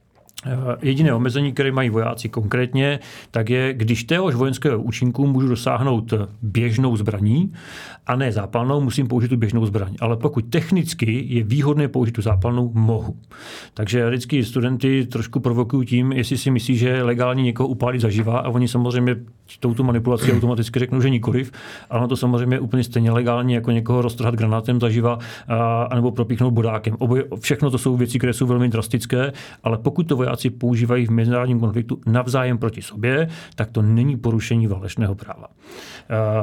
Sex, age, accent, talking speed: male, 40-59, native, 165 wpm